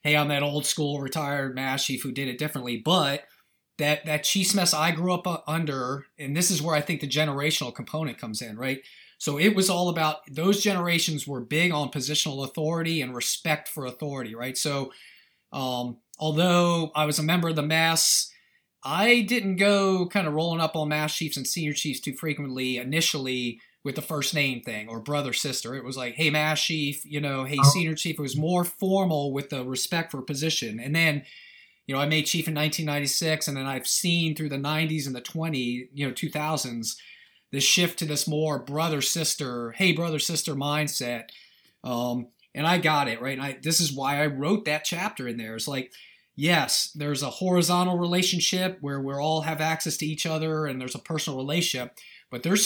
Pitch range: 135-165 Hz